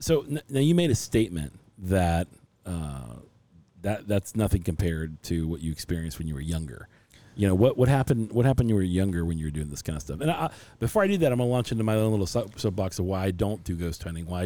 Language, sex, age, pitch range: English, male, 40-59, 85-110 Hz